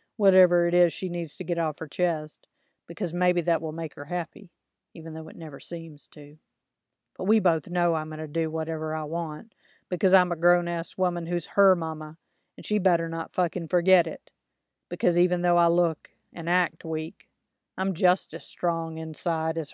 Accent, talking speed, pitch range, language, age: American, 190 wpm, 160-180 Hz, English, 40-59